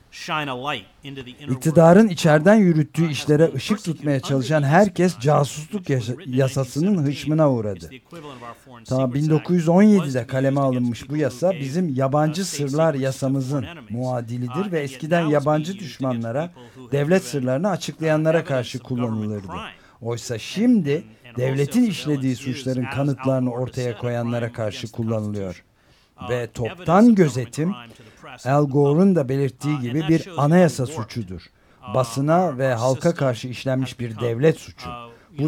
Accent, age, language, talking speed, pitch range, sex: native, 50-69, Turkish, 105 wpm, 125-155 Hz, male